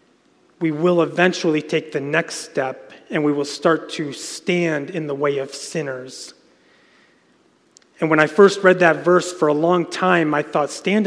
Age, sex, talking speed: 30-49, male, 175 wpm